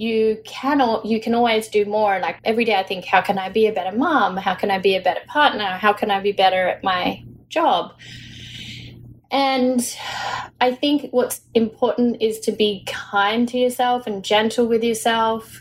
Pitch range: 200-245 Hz